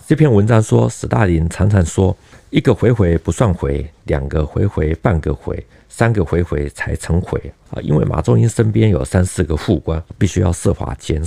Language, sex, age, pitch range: Chinese, male, 50-69, 80-95 Hz